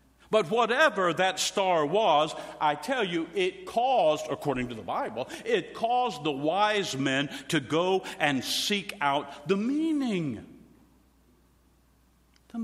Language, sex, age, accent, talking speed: English, male, 60-79, American, 130 wpm